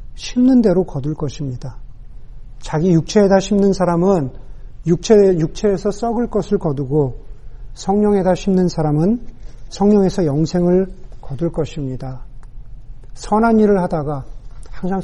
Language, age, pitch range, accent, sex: Korean, 40-59, 130-200 Hz, native, male